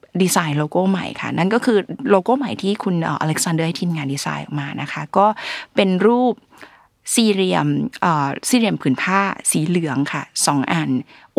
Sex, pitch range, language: female, 160-215 Hz, Thai